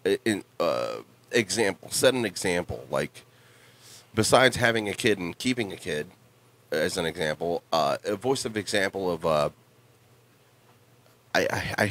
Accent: American